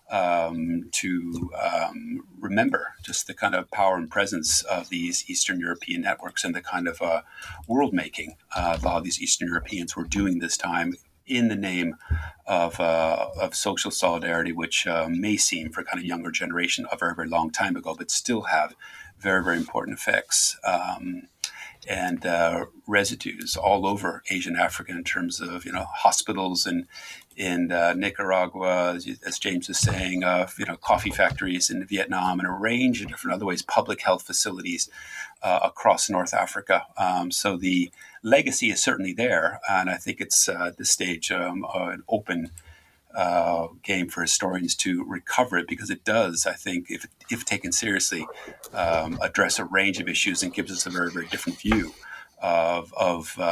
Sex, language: male, English